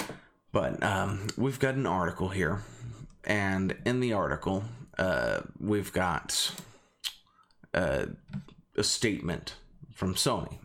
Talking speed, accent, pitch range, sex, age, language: 105 wpm, American, 95-105 Hz, male, 30-49, English